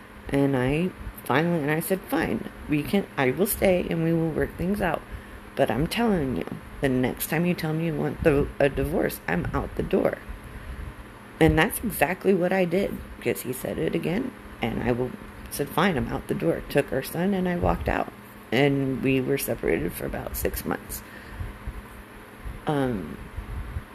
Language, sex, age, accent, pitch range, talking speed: English, female, 40-59, American, 105-165 Hz, 180 wpm